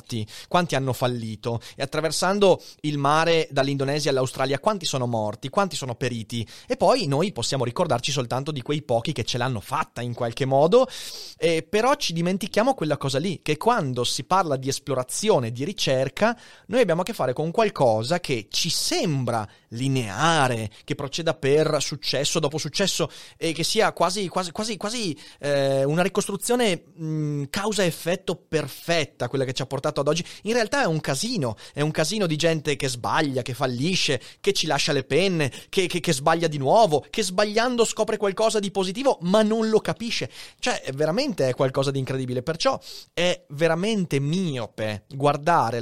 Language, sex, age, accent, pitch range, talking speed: Italian, male, 30-49, native, 135-190 Hz, 165 wpm